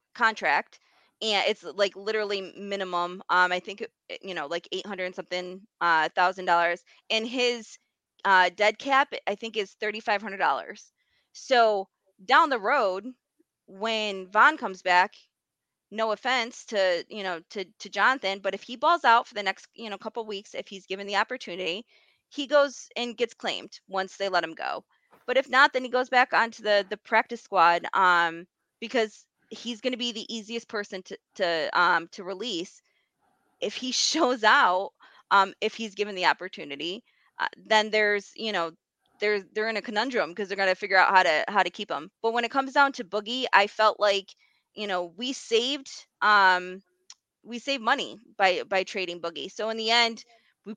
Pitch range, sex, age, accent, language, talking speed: 190-235 Hz, female, 20-39, American, English, 190 wpm